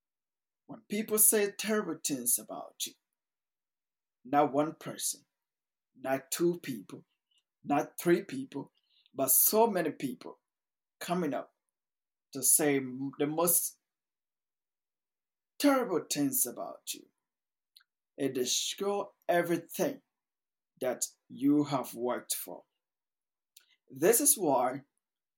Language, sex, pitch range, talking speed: English, male, 150-220 Hz, 95 wpm